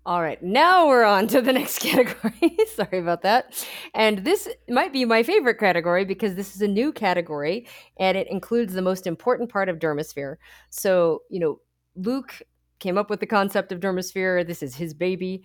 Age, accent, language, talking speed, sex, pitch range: 30-49, American, English, 190 wpm, female, 150-195 Hz